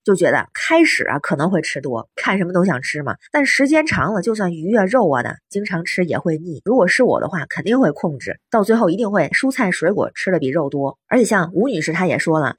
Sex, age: female, 20-39